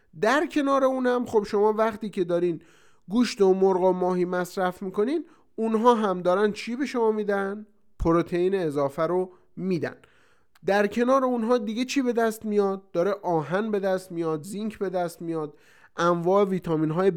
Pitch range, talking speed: 180-225 Hz, 165 wpm